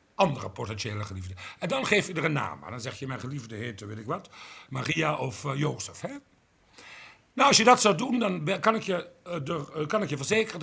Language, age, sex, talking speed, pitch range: Dutch, 50-69, male, 230 wpm, 145-215 Hz